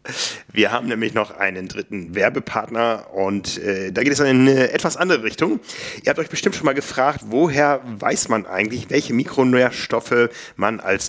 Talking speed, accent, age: 175 wpm, German, 40-59